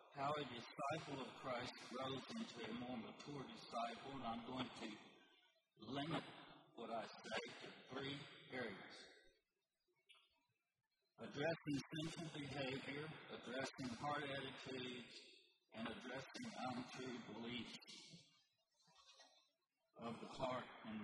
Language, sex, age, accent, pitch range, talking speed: English, male, 50-69, American, 130-160 Hz, 105 wpm